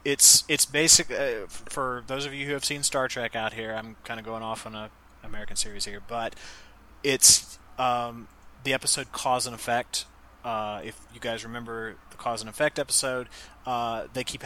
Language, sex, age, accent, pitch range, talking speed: English, male, 30-49, American, 110-130 Hz, 190 wpm